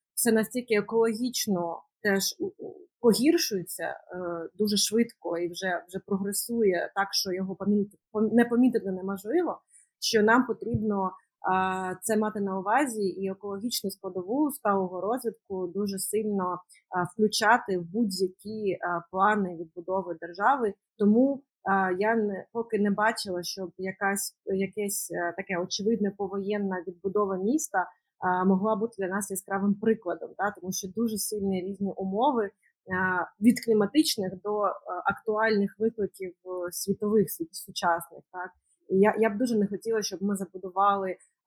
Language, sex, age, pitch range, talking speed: Ukrainian, female, 30-49, 185-215 Hz, 125 wpm